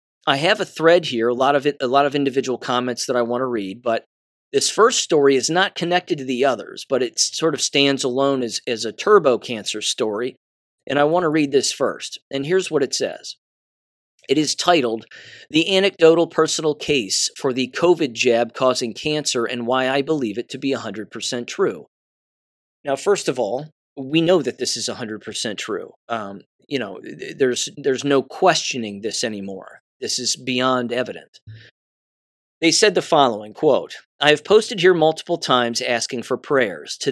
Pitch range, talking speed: 120-160 Hz, 185 wpm